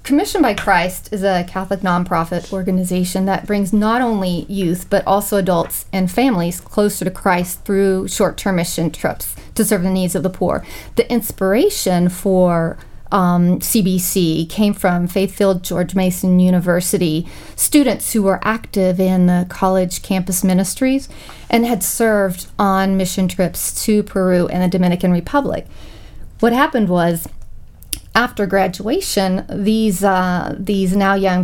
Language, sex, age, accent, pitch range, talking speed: English, female, 40-59, American, 180-210 Hz, 140 wpm